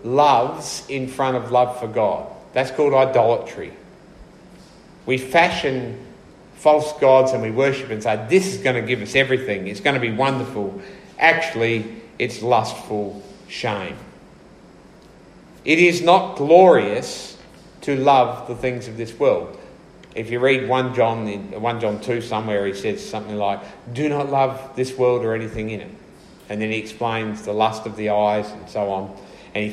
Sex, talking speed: male, 170 wpm